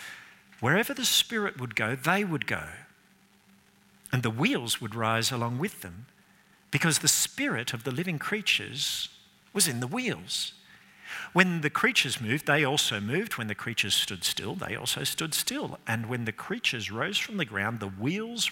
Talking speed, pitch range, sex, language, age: 170 wpm, 115-175 Hz, male, English, 50-69